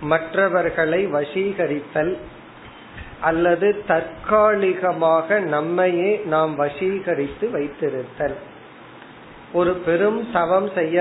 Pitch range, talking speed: 155-185 Hz, 65 wpm